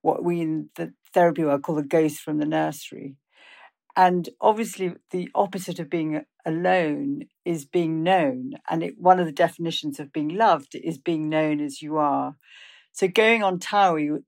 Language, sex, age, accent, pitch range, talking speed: English, female, 50-69, British, 155-190 Hz, 170 wpm